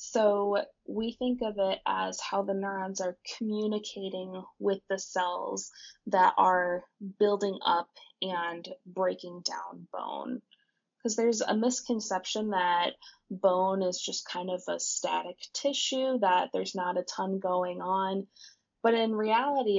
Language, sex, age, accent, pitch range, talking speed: English, female, 20-39, American, 185-220 Hz, 135 wpm